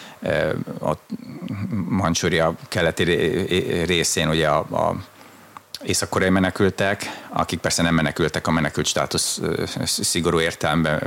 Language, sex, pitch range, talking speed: Hungarian, male, 80-90 Hz, 105 wpm